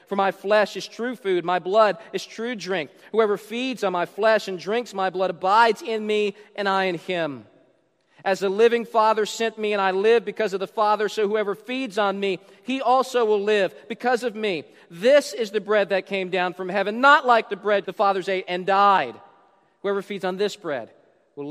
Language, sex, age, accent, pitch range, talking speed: English, male, 40-59, American, 150-210 Hz, 210 wpm